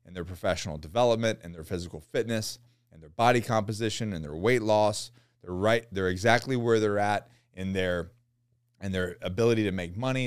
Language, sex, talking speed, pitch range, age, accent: English, male, 175 wpm, 100-120 Hz, 30-49, American